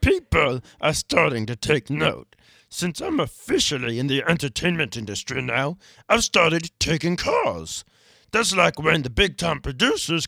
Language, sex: English, male